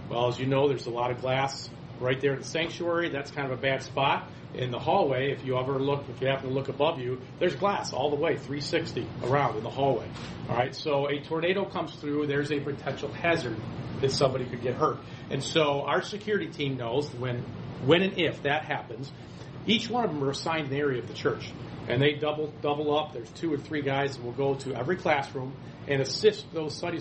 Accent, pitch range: American, 125-150 Hz